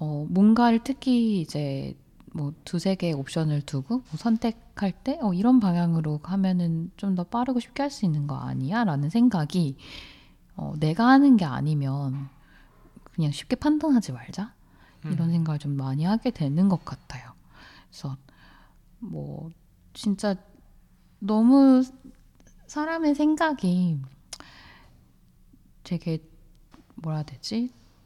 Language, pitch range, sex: Korean, 150-205 Hz, female